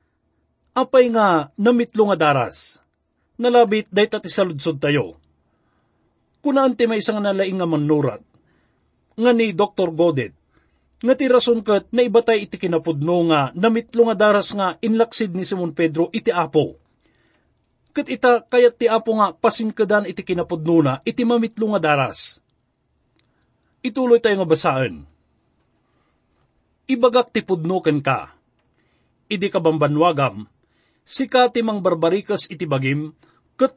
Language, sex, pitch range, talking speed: English, male, 155-230 Hz, 120 wpm